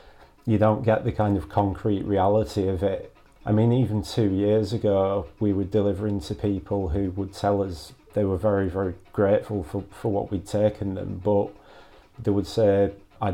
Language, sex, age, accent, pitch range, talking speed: English, male, 30-49, British, 95-105 Hz, 185 wpm